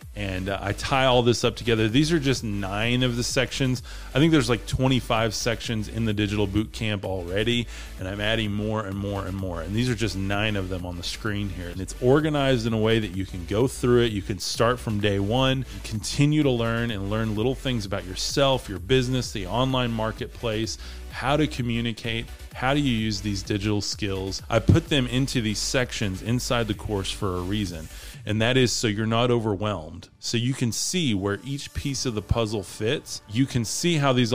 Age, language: 30-49, English